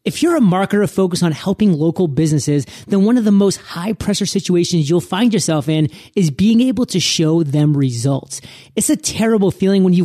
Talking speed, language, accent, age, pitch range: 195 wpm, English, American, 30-49, 160-205 Hz